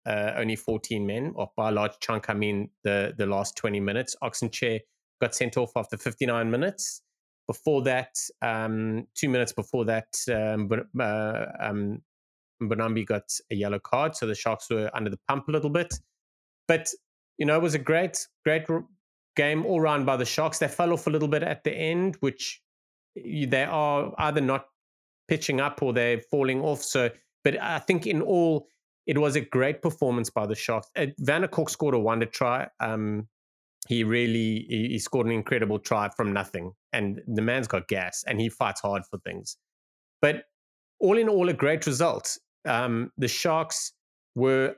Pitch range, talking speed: 110-150 Hz, 190 wpm